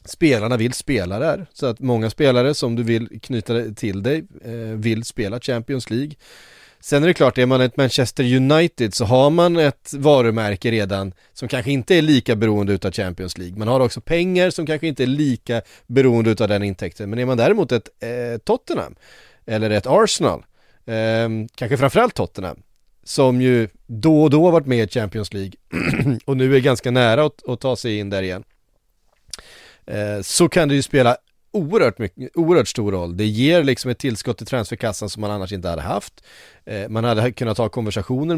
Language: Swedish